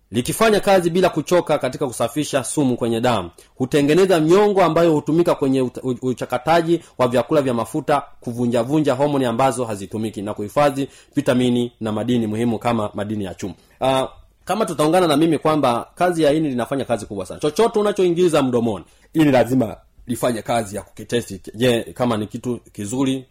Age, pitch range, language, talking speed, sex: 30-49, 115-160 Hz, Swahili, 155 wpm, male